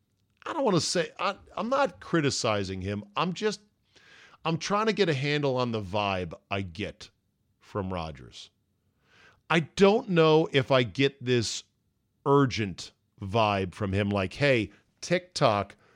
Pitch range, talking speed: 100-140 Hz, 145 wpm